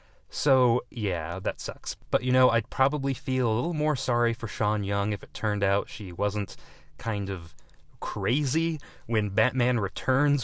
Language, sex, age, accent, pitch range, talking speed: English, male, 30-49, American, 100-130 Hz, 165 wpm